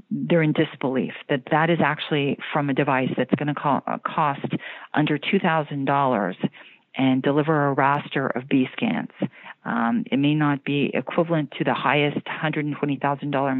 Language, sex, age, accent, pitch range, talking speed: English, female, 40-59, American, 130-160 Hz, 145 wpm